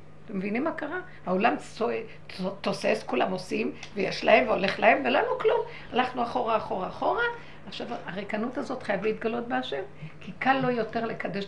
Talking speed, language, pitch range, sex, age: 170 wpm, Hebrew, 210-275 Hz, female, 60-79